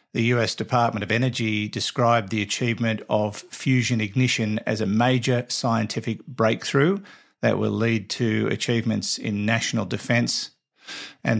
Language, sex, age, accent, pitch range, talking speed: English, male, 50-69, Australian, 105-125 Hz, 130 wpm